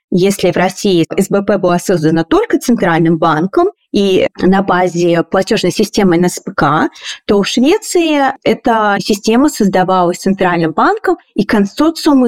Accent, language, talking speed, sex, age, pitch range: native, Russian, 120 wpm, female, 30-49, 195-275 Hz